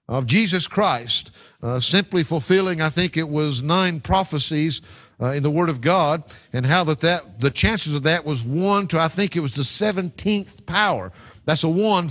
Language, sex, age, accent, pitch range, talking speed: English, male, 50-69, American, 135-185 Hz, 195 wpm